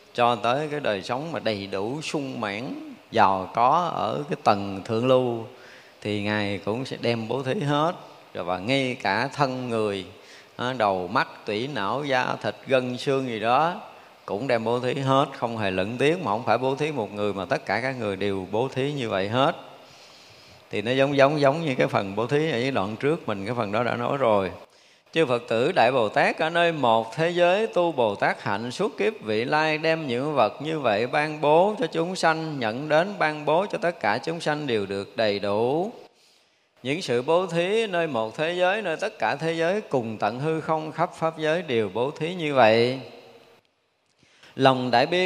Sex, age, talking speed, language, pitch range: male, 20-39, 210 wpm, Vietnamese, 115-165 Hz